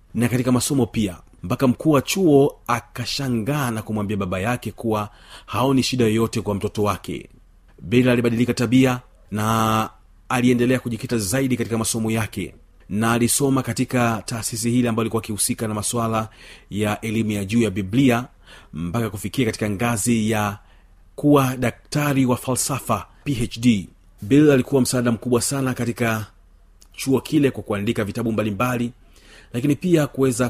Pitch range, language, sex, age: 105-125 Hz, Swahili, male, 40-59